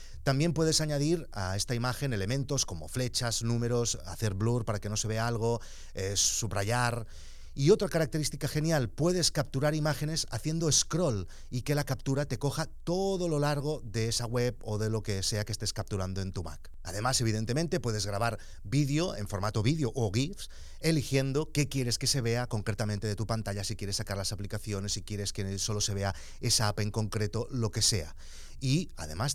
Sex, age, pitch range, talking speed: male, 30-49, 105-145 Hz, 190 wpm